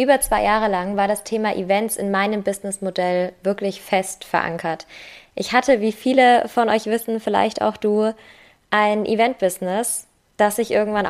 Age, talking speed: 20-39, 155 wpm